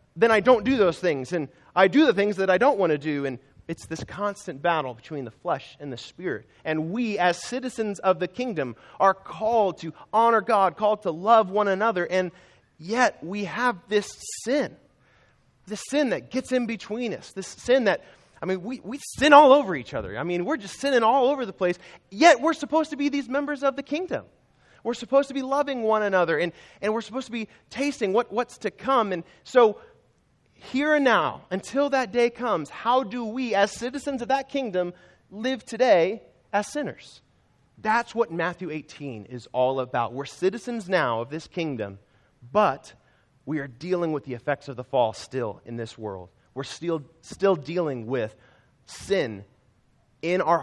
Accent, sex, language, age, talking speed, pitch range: American, male, English, 30-49, 195 wpm, 150-235 Hz